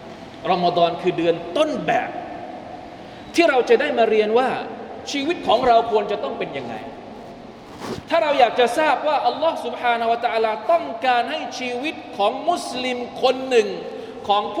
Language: Thai